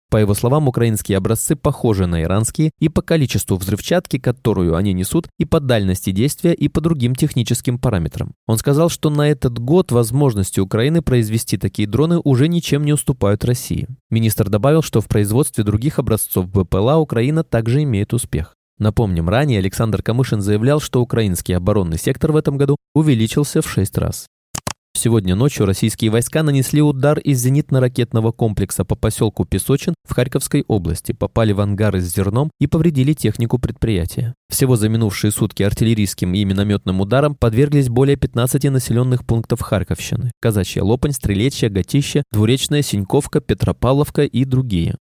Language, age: Russian, 20-39